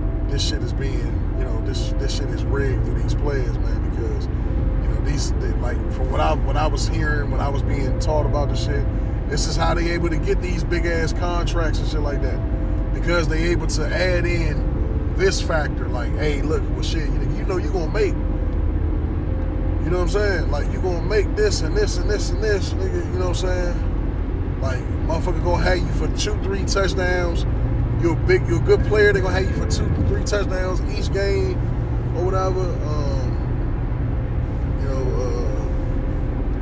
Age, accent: 20-39, American